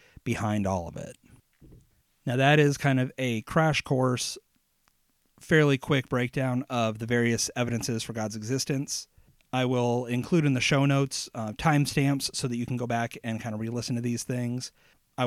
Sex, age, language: male, 30-49, English